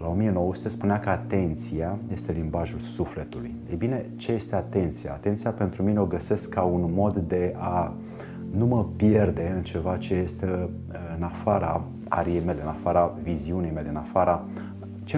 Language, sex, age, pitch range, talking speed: Romanian, male, 30-49, 85-105 Hz, 160 wpm